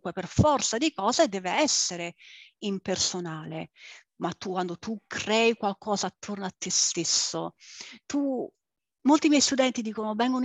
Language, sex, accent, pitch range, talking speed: Italian, female, native, 200-265 Hz, 130 wpm